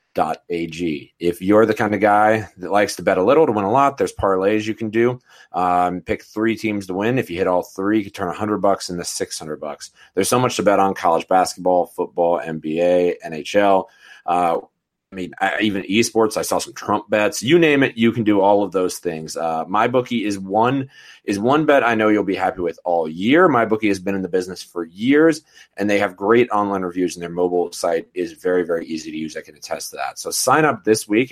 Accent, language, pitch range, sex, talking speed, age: American, English, 95-125 Hz, male, 240 wpm, 30-49